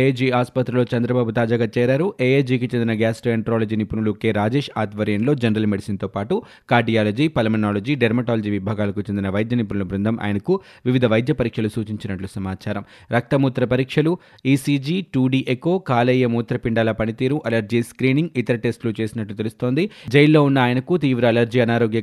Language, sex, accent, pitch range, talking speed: Telugu, male, native, 110-130 Hz, 135 wpm